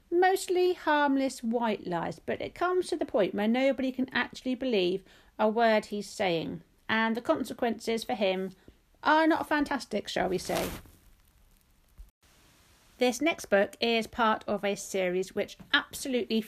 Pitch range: 195-255 Hz